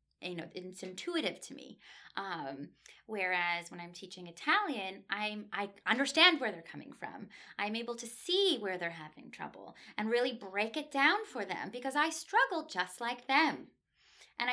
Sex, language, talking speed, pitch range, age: female, English, 170 wpm, 195-275 Hz, 20-39